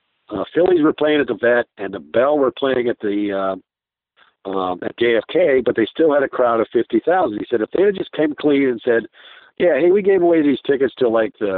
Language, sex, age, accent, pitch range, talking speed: English, male, 50-69, American, 115-185 Hz, 240 wpm